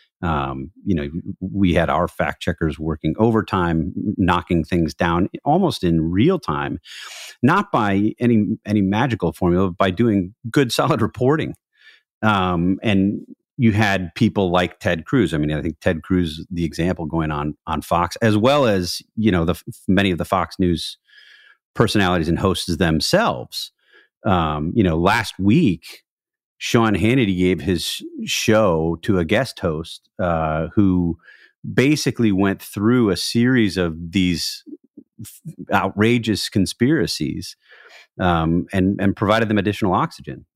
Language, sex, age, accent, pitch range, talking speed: English, male, 40-59, American, 85-110 Hz, 140 wpm